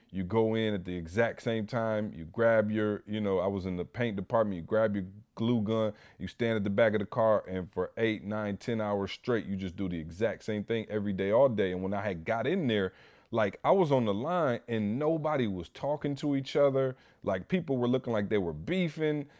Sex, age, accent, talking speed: male, 30-49, American, 240 wpm